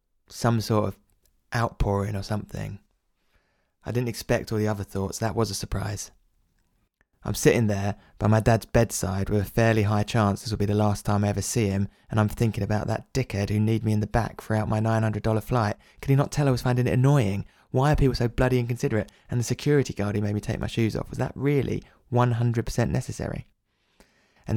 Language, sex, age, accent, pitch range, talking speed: English, male, 20-39, British, 100-125 Hz, 215 wpm